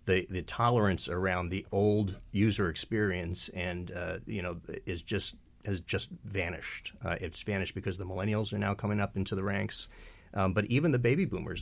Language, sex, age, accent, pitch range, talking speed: English, male, 40-59, American, 90-105 Hz, 185 wpm